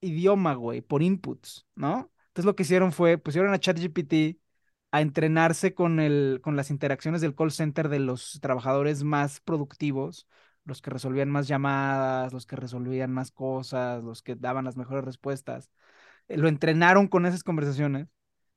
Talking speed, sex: 160 wpm, male